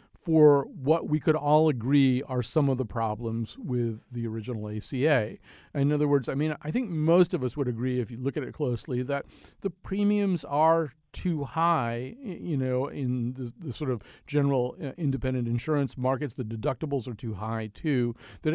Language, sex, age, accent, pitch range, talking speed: English, male, 50-69, American, 125-160 Hz, 185 wpm